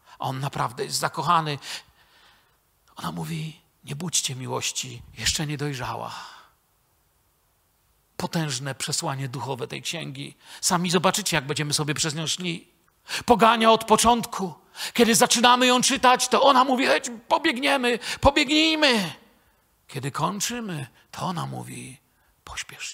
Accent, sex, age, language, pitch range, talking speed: native, male, 50-69, Polish, 140-210 Hz, 115 wpm